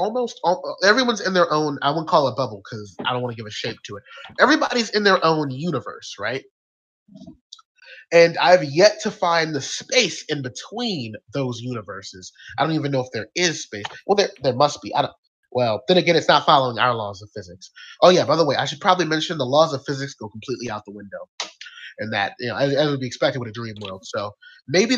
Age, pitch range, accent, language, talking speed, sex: 20-39, 120-175 Hz, American, English, 235 wpm, male